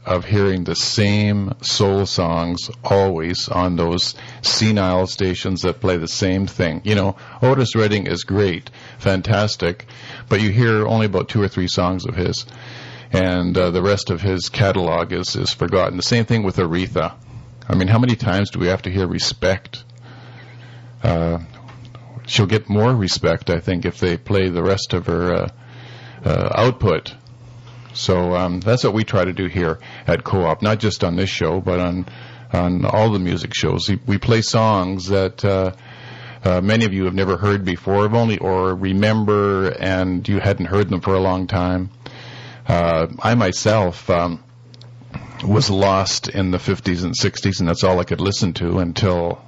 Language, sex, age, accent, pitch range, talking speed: English, male, 50-69, American, 90-120 Hz, 175 wpm